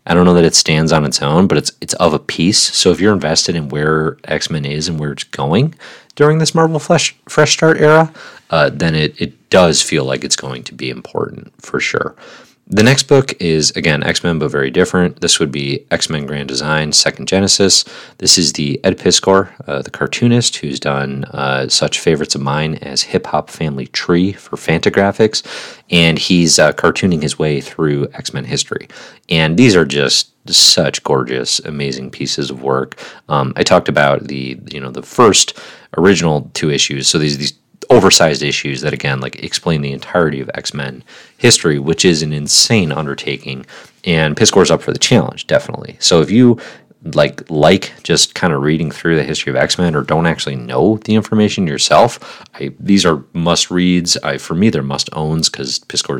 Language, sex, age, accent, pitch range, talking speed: English, male, 30-49, American, 70-90 Hz, 195 wpm